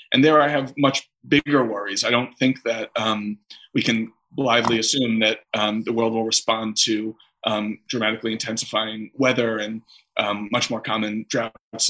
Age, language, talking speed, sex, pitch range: 20-39, English, 165 wpm, male, 110-120 Hz